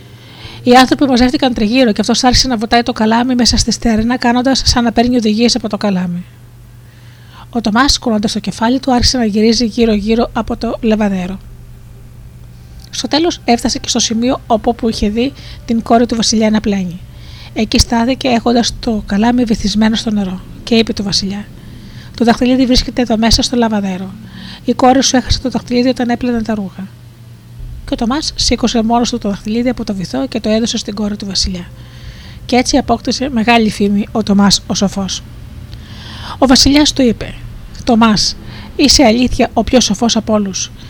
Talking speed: 175 wpm